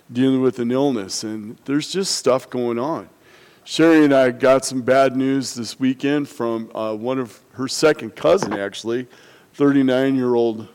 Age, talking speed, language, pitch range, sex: 40-59, 160 wpm, English, 115-135 Hz, male